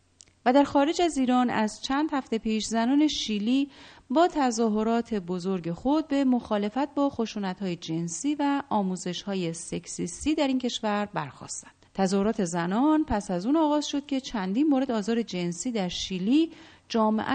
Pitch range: 190-280 Hz